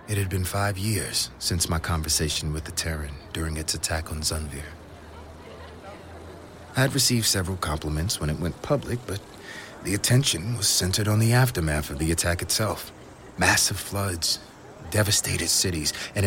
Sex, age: male, 30-49